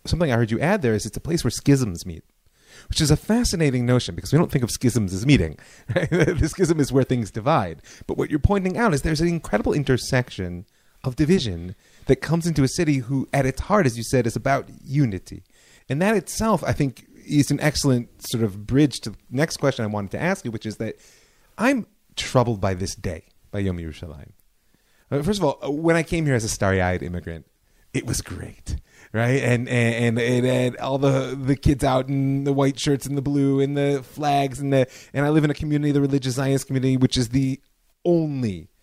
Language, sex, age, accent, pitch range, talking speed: English, male, 30-49, American, 105-145 Hz, 220 wpm